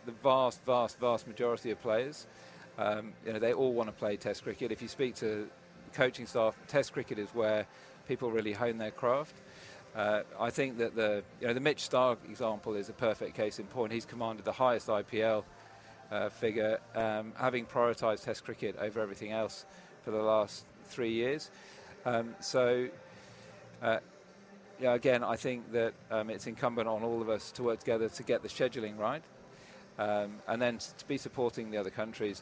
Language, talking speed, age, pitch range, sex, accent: English, 185 wpm, 40-59, 110-125 Hz, male, British